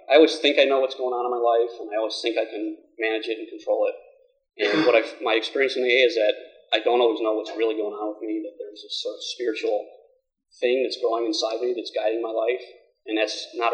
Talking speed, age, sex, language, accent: 260 wpm, 30-49, male, English, American